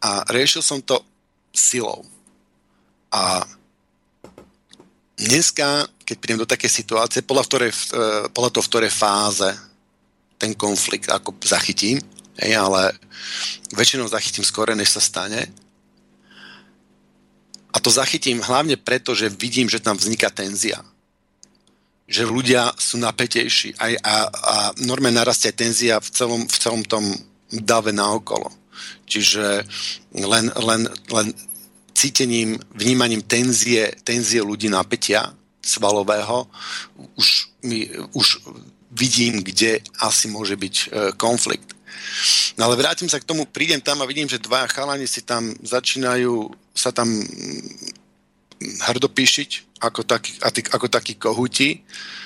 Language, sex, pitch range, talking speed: Slovak, male, 110-130 Hz, 115 wpm